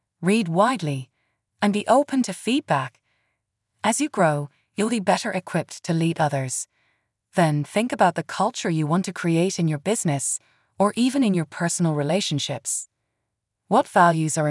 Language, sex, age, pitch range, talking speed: English, female, 30-49, 140-195 Hz, 155 wpm